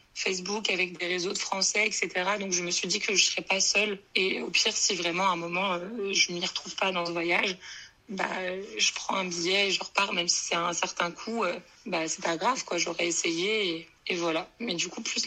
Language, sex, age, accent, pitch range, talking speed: French, female, 20-39, French, 175-200 Hz, 255 wpm